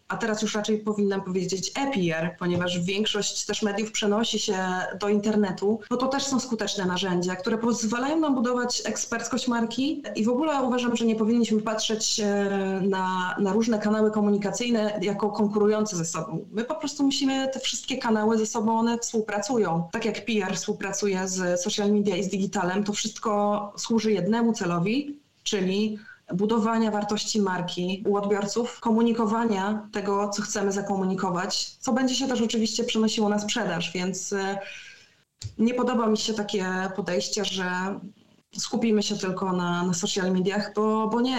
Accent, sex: native, female